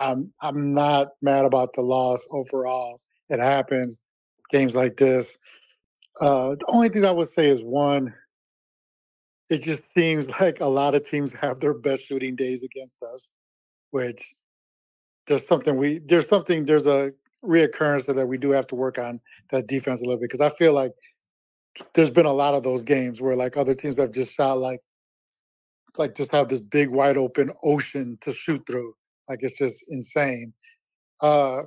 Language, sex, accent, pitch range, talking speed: English, male, American, 130-150 Hz, 180 wpm